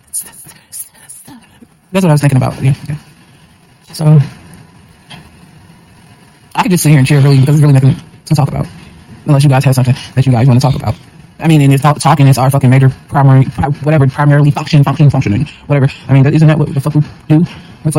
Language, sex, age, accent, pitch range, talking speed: English, male, 30-49, American, 130-150 Hz, 215 wpm